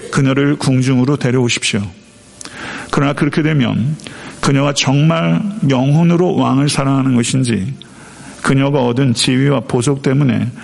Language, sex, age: Korean, male, 50-69